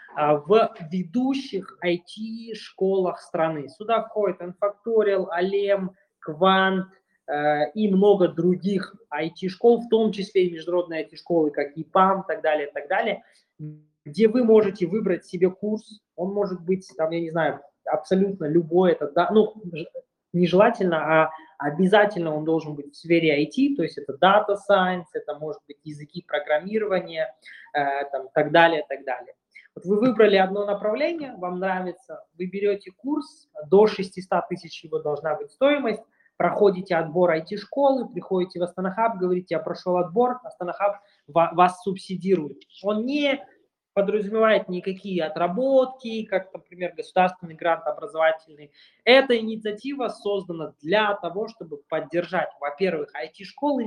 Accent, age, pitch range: native, 20-39, 165-210 Hz